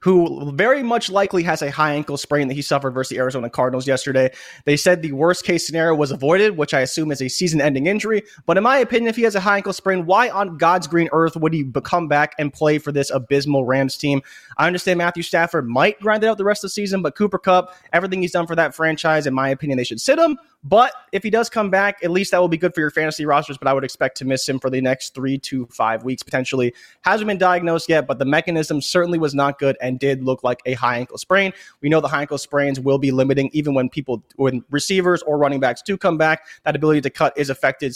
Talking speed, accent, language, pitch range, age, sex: 260 wpm, American, English, 140-180 Hz, 20-39, male